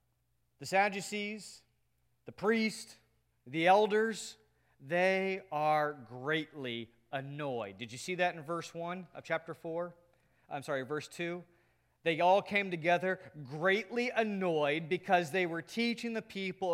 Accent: American